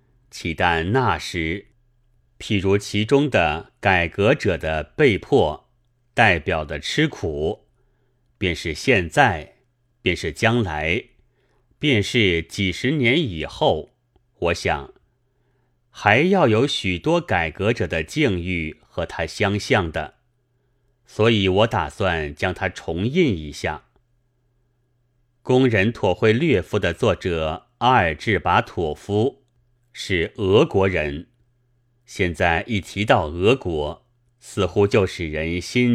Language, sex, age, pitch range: Chinese, male, 30-49, 90-125 Hz